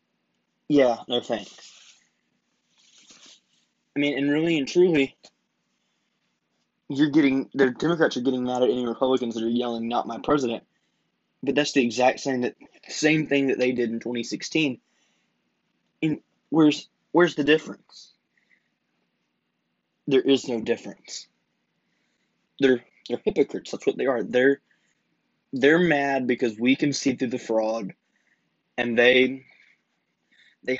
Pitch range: 120-145 Hz